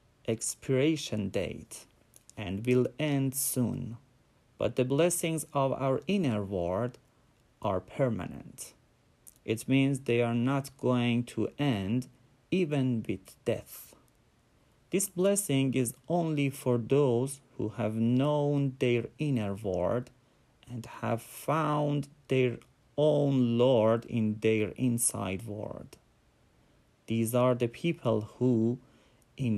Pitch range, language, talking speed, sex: 115-140 Hz, Persian, 110 wpm, male